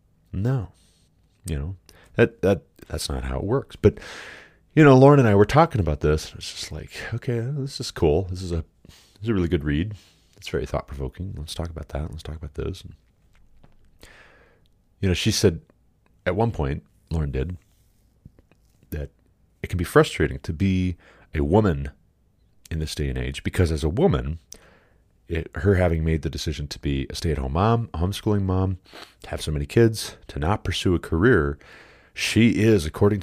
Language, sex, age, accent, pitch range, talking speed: English, male, 30-49, American, 80-105 Hz, 185 wpm